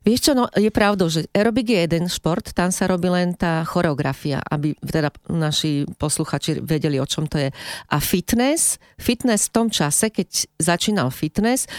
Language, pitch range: Slovak, 155-200 Hz